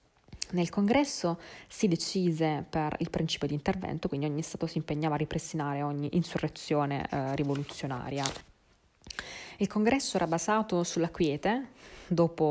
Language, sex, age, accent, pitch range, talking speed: Italian, female, 20-39, native, 145-170 Hz, 130 wpm